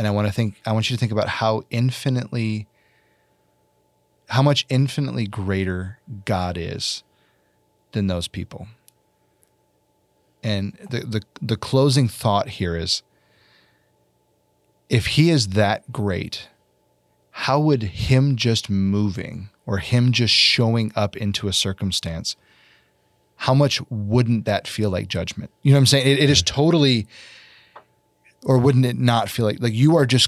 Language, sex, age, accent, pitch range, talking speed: English, male, 30-49, American, 100-125 Hz, 145 wpm